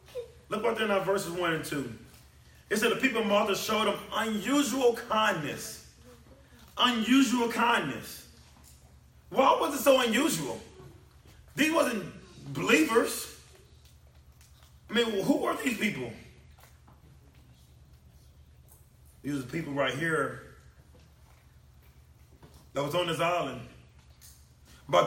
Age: 30-49